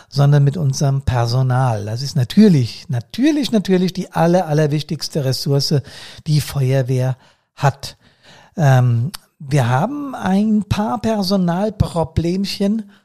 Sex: male